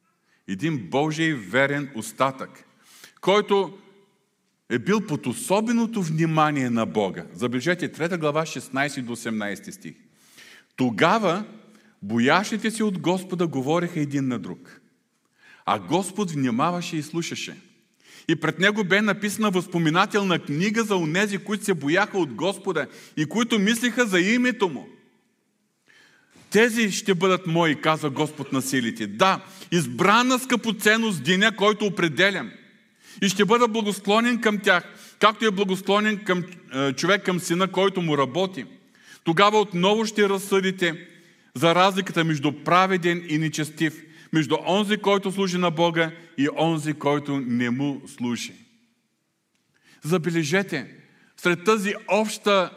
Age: 40-59